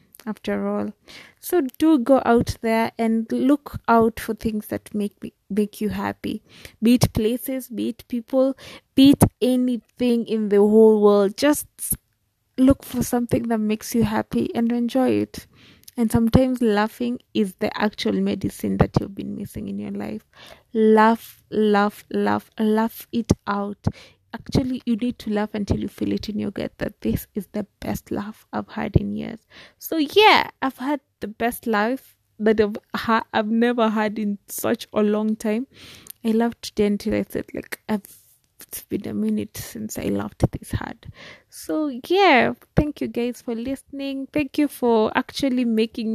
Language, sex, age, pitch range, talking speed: English, female, 20-39, 210-265 Hz, 165 wpm